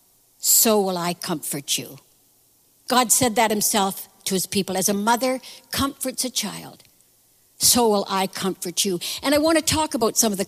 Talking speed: 185 wpm